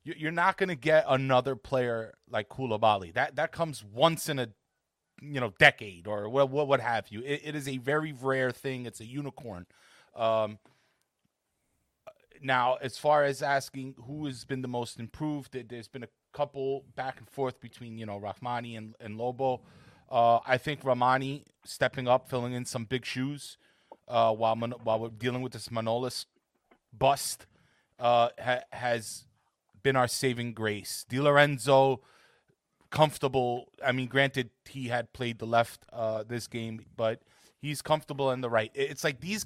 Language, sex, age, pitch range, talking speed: English, male, 30-49, 115-145 Hz, 165 wpm